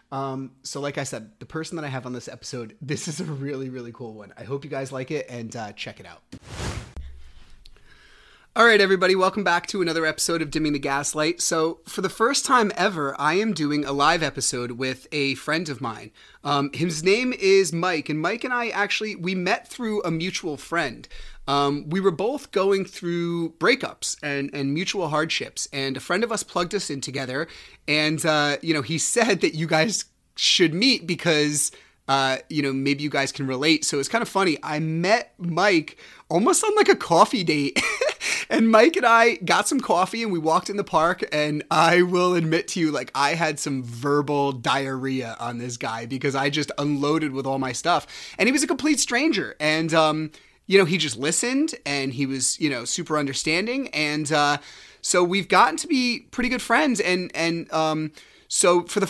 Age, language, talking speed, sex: 30-49, English, 205 wpm, male